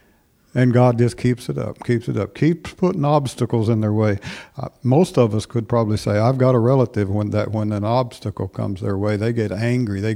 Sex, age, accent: male, 60-79, American